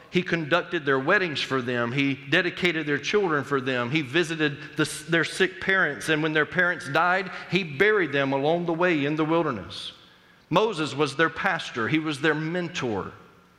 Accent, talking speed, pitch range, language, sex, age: American, 170 wpm, 135-175 Hz, English, male, 40-59